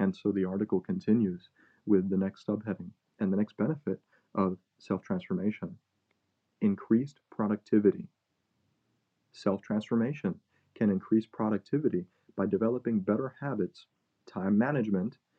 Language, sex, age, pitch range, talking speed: English, male, 30-49, 100-135 Hz, 105 wpm